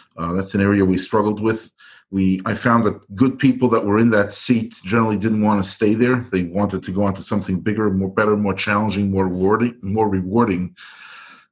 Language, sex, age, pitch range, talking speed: English, male, 40-59, 95-115 Hz, 210 wpm